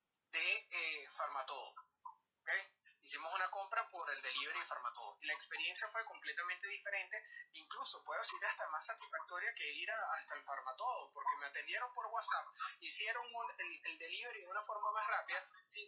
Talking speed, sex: 175 wpm, male